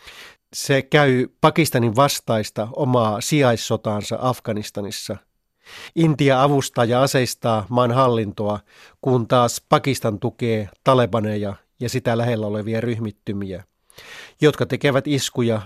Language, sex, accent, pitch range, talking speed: Finnish, male, native, 110-130 Hz, 100 wpm